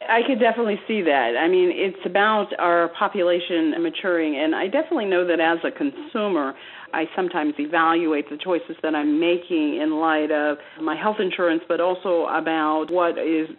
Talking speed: 170 wpm